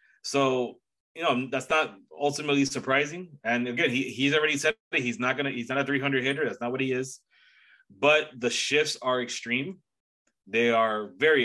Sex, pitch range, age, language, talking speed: male, 120-150 Hz, 20-39, English, 190 wpm